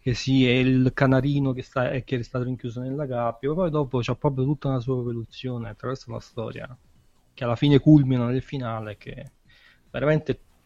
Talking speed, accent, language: 185 wpm, native, Italian